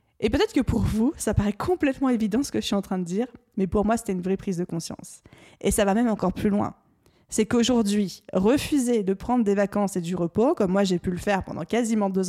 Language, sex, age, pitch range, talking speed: French, female, 20-39, 200-240 Hz, 255 wpm